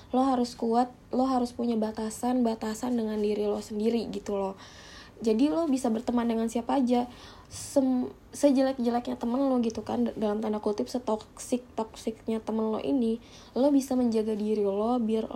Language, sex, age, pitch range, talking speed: Indonesian, female, 20-39, 220-250 Hz, 150 wpm